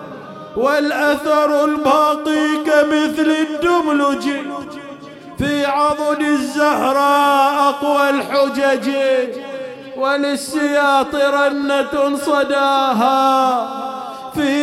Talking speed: 55 wpm